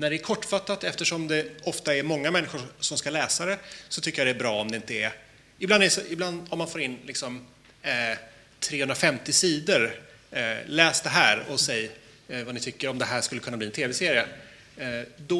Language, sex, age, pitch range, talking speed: Swedish, male, 30-49, 125-175 Hz, 220 wpm